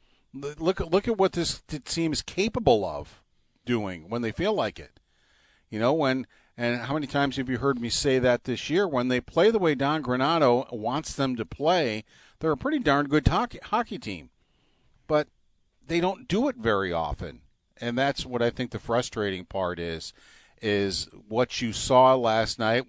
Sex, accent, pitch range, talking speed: male, American, 110-135 Hz, 185 wpm